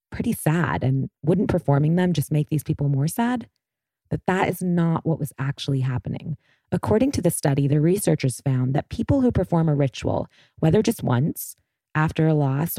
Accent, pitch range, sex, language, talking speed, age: American, 140-170 Hz, female, English, 185 wpm, 20-39